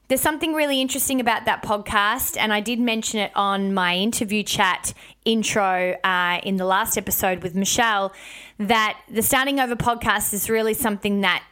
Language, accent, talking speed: English, Australian, 170 wpm